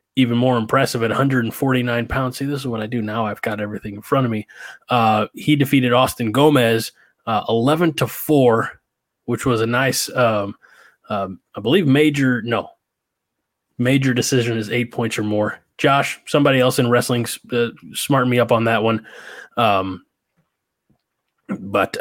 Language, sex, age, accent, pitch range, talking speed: English, male, 20-39, American, 115-135 Hz, 165 wpm